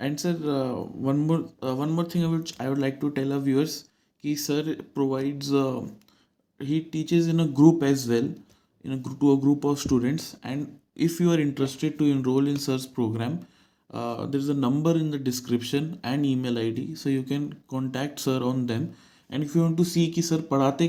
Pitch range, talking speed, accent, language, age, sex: 125-150 Hz, 180 wpm, native, Hindi, 20-39, male